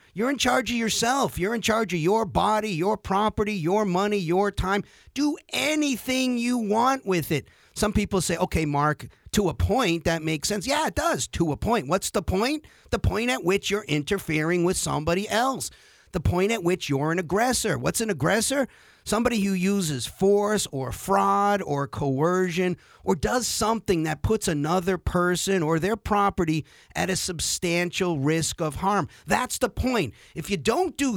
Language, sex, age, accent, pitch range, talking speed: English, male, 50-69, American, 165-215 Hz, 180 wpm